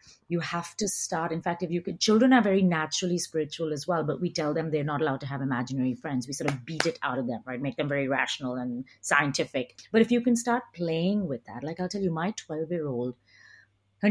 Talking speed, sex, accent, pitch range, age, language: 245 wpm, female, Indian, 140-195 Hz, 30-49, English